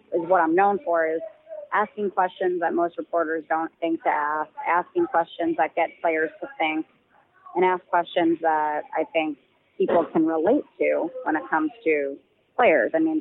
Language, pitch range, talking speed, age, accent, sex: English, 160-195 Hz, 175 wpm, 20-39, American, female